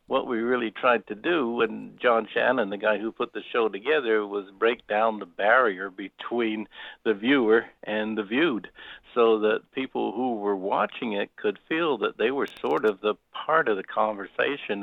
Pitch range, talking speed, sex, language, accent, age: 105-115 Hz, 185 wpm, male, English, American, 60-79